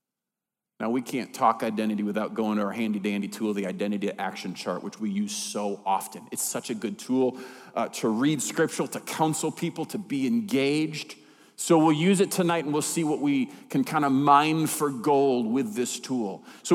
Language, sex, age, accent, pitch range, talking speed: English, male, 40-59, American, 160-210 Hz, 195 wpm